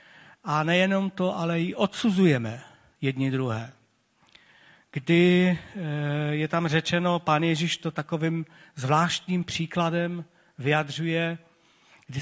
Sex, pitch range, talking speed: male, 145-175 Hz, 100 wpm